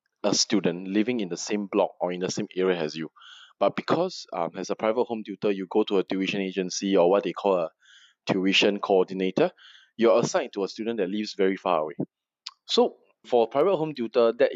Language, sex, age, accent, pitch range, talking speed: English, male, 20-39, Malaysian, 95-115 Hz, 215 wpm